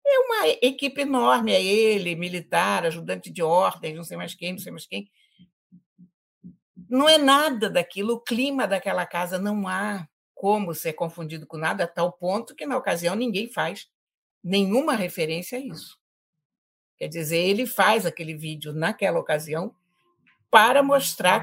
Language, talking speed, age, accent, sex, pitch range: Portuguese, 155 wpm, 60-79, Brazilian, female, 165-255 Hz